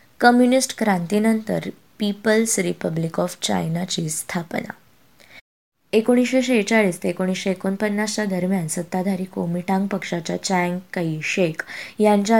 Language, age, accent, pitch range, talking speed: Marathi, 20-39, native, 170-200 Hz, 90 wpm